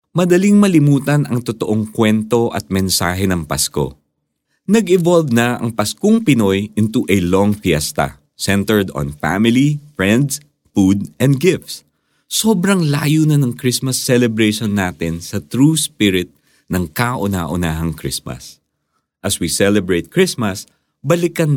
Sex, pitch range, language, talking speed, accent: male, 80-130 Hz, Filipino, 120 wpm, native